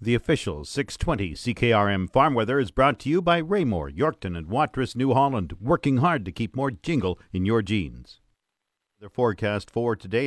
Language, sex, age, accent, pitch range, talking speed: English, male, 50-69, American, 105-140 Hz, 175 wpm